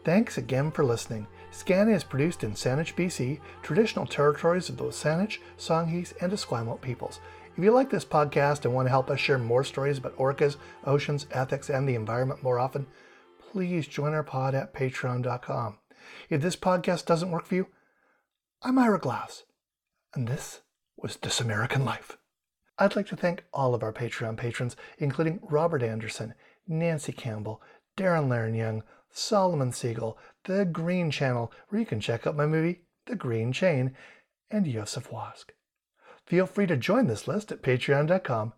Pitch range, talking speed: 125-185 Hz, 165 wpm